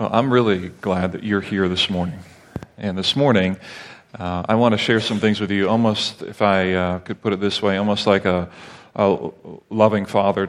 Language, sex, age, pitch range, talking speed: English, male, 40-59, 95-105 Hz, 200 wpm